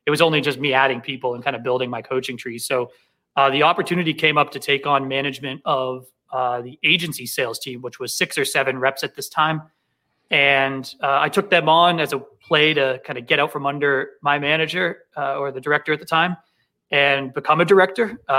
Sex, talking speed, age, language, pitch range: male, 220 wpm, 30-49, English, 135-155 Hz